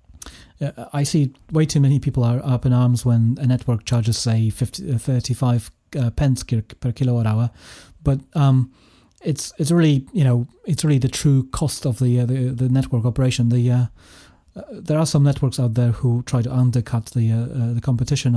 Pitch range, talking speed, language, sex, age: 115-135 Hz, 190 wpm, English, male, 30-49